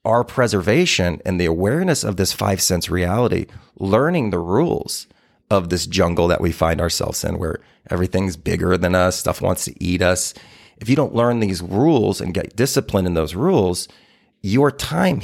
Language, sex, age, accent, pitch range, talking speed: English, male, 30-49, American, 90-115 Hz, 175 wpm